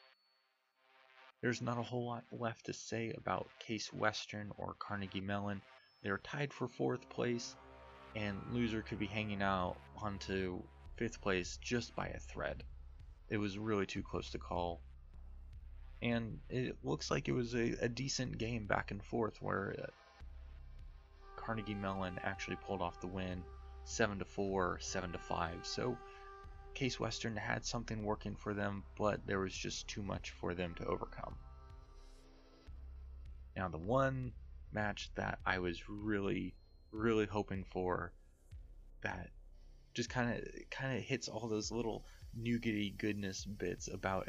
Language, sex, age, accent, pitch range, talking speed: English, male, 20-39, American, 80-110 Hz, 150 wpm